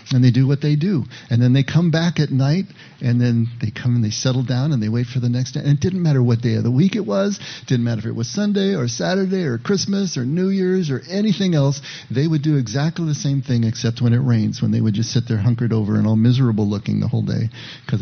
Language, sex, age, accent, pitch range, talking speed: English, male, 50-69, American, 120-150 Hz, 275 wpm